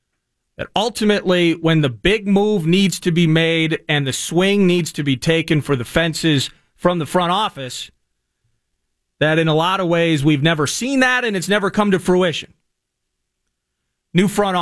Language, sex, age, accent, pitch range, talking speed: English, male, 40-59, American, 125-165 Hz, 170 wpm